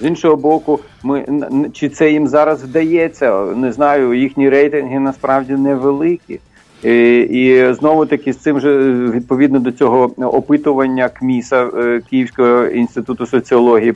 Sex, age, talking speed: male, 40-59, 130 wpm